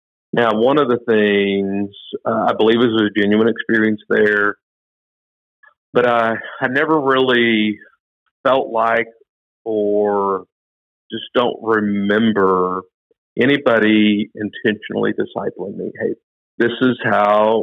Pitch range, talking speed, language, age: 100-125 Hz, 110 wpm, English, 50-69